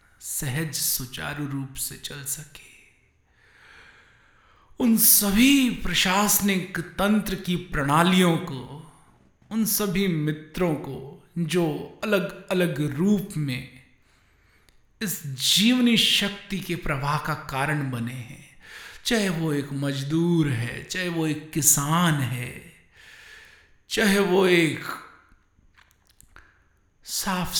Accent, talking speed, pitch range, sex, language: native, 100 wpm, 135-185 Hz, male, Hindi